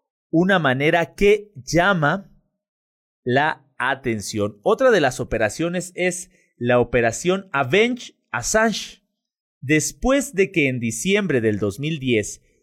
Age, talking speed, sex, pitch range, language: 30-49, 100 wpm, male, 135-200 Hz, Spanish